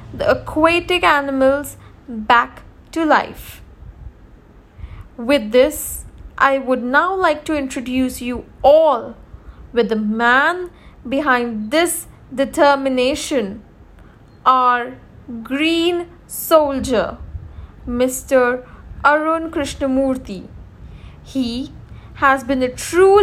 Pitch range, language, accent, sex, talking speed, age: 245-310 Hz, English, Indian, female, 85 wpm, 20-39